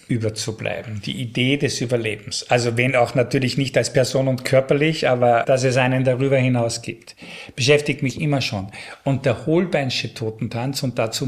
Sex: male